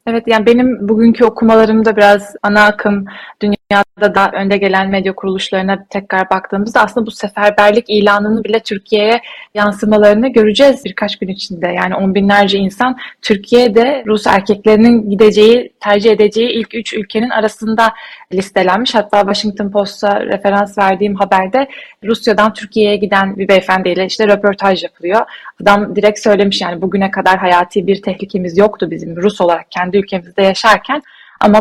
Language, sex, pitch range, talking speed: Turkish, female, 195-225 Hz, 140 wpm